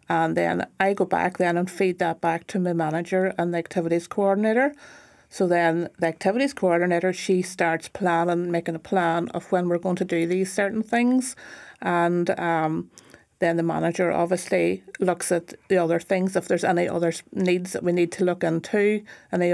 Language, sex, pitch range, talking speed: English, female, 170-195 Hz, 185 wpm